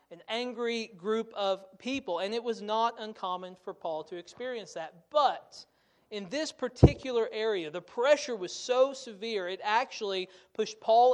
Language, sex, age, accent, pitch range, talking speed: English, male, 40-59, American, 195-245 Hz, 155 wpm